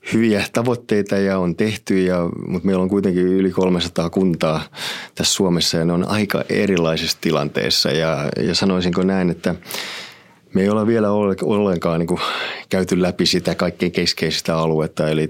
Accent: native